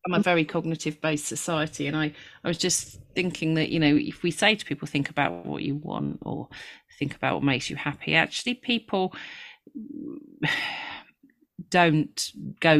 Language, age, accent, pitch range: English, 40-59, British, 130-165 Hz